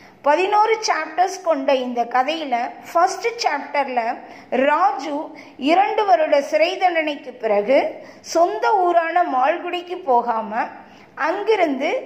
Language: Tamil